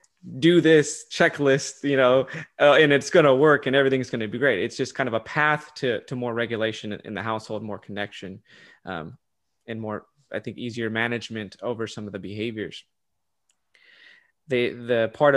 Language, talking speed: English, 185 wpm